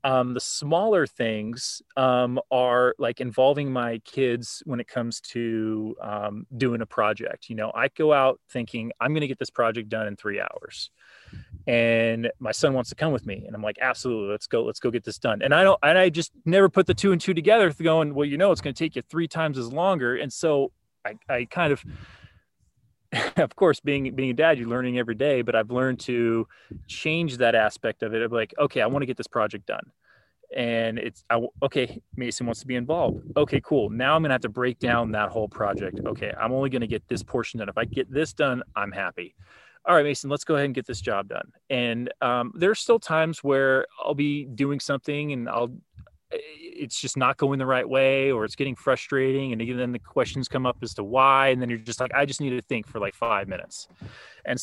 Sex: male